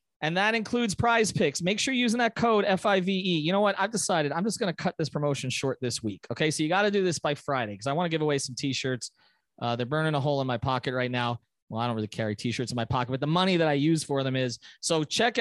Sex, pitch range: male, 135-185 Hz